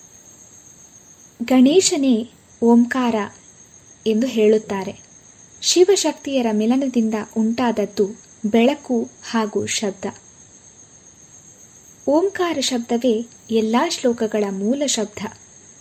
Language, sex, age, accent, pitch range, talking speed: Kannada, female, 20-39, native, 220-265 Hz, 55 wpm